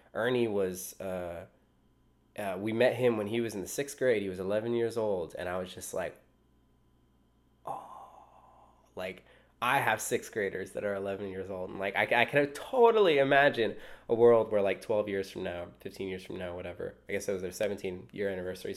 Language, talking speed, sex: English, 200 wpm, male